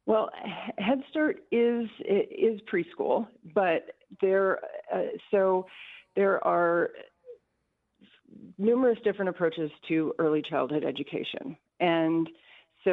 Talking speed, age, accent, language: 95 wpm, 40-59, American, English